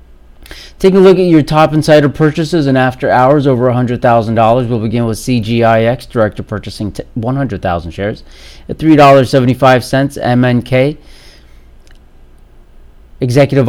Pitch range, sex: 105-140 Hz, male